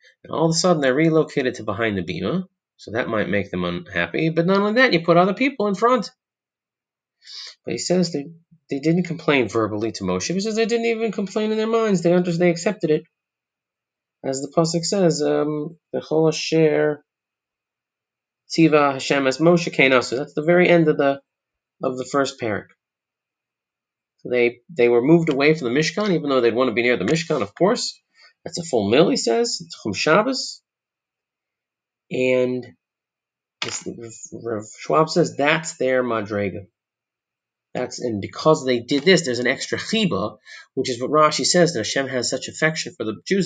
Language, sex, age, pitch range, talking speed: English, male, 30-49, 120-170 Hz, 180 wpm